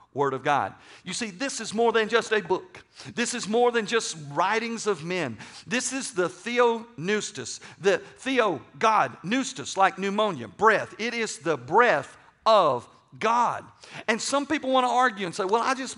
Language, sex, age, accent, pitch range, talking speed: English, male, 50-69, American, 140-190 Hz, 175 wpm